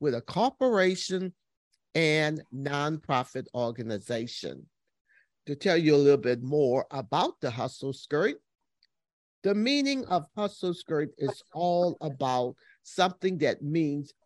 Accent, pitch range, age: American, 140-205 Hz, 50-69